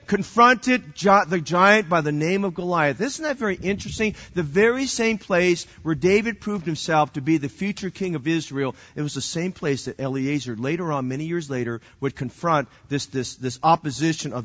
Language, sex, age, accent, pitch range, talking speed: English, male, 40-59, American, 195-255 Hz, 190 wpm